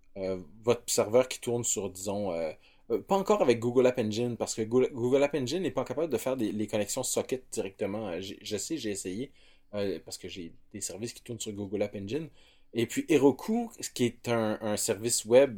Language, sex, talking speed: French, male, 210 wpm